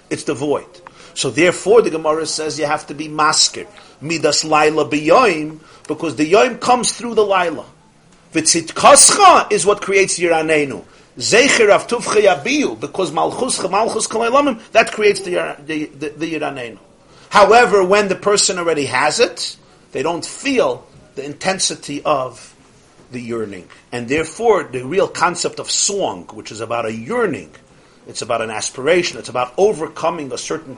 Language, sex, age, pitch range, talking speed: English, male, 50-69, 130-200 Hz, 150 wpm